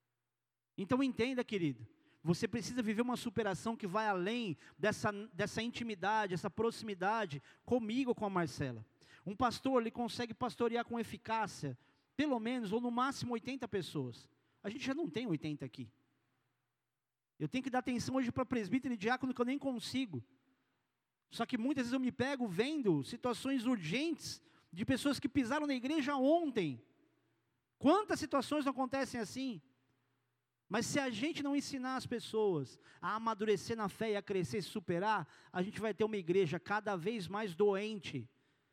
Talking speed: 160 wpm